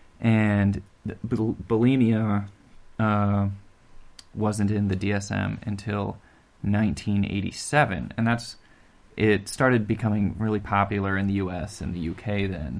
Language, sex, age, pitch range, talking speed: English, male, 20-39, 100-125 Hz, 115 wpm